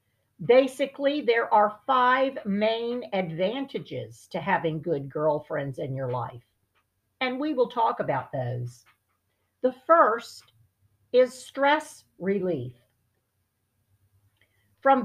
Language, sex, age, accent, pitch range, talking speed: English, female, 50-69, American, 145-245 Hz, 100 wpm